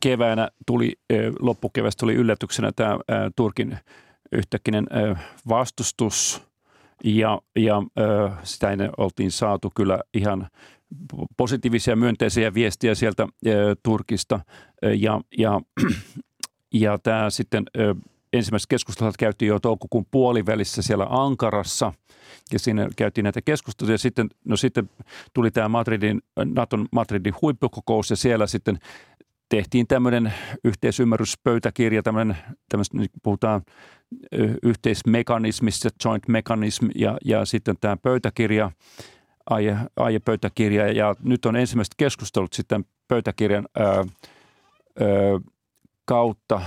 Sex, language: male, Finnish